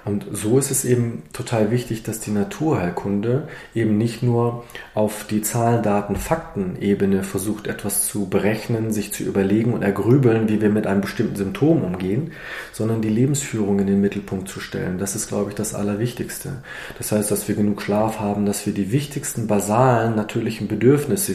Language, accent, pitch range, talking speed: German, German, 100-120 Hz, 170 wpm